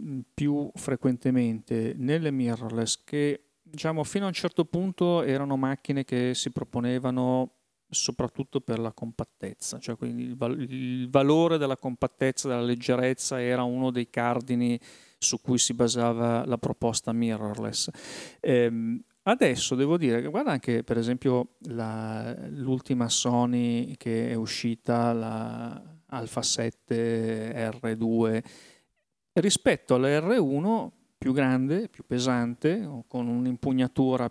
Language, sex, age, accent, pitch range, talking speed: Italian, male, 40-59, native, 120-140 Hz, 115 wpm